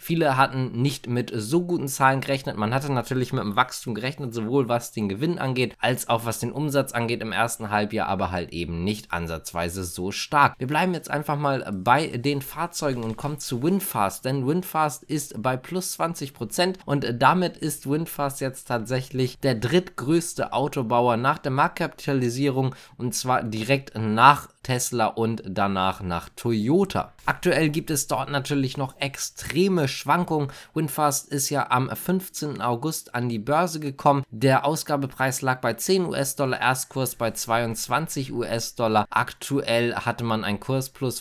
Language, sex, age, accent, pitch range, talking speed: German, male, 20-39, German, 110-140 Hz, 160 wpm